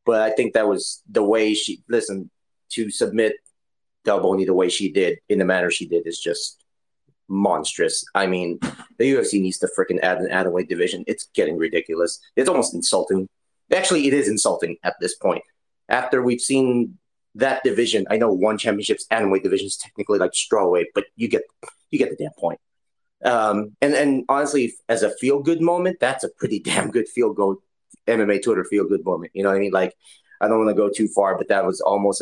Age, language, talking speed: 30-49, English, 205 wpm